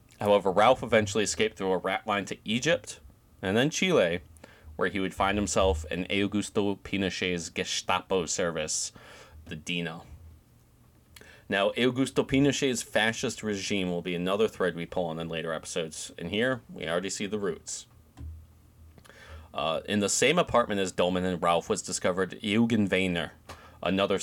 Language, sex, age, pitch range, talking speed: English, male, 30-49, 85-105 Hz, 150 wpm